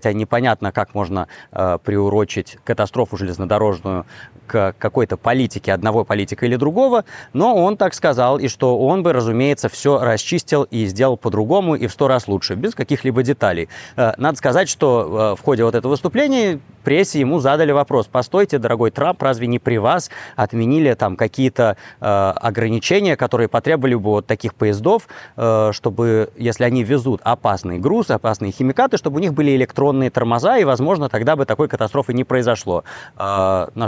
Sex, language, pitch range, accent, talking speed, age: male, Russian, 105-140 Hz, native, 170 wpm, 20-39